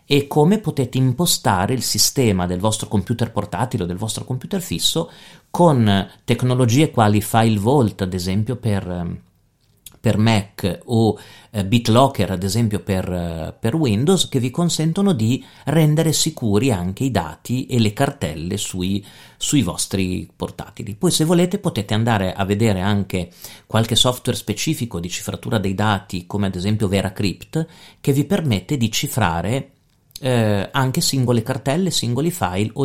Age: 40-59